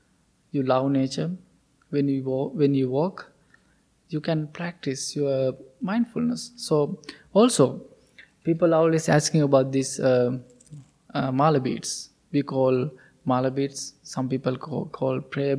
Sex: male